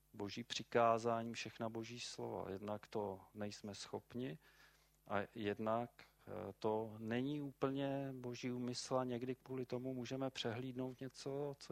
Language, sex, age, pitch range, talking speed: Czech, male, 40-59, 115-135 Hz, 125 wpm